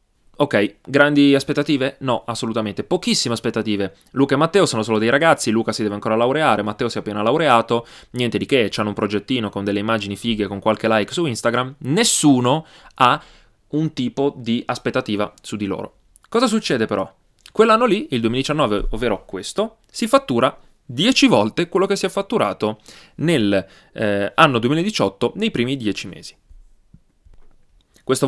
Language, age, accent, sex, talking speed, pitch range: Italian, 20-39, native, male, 160 wpm, 105-135 Hz